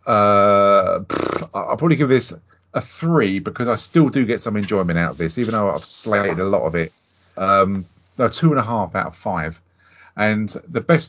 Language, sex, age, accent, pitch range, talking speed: English, male, 40-59, British, 90-115 Hz, 200 wpm